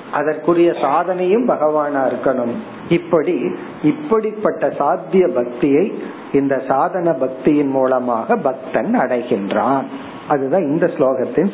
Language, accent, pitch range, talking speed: Tamil, native, 140-175 Hz, 90 wpm